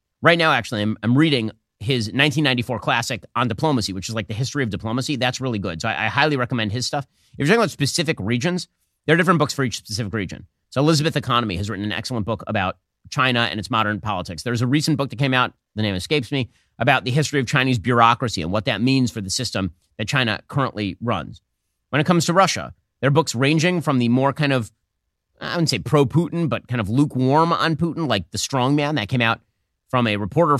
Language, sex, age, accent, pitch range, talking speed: English, male, 30-49, American, 100-140 Hz, 230 wpm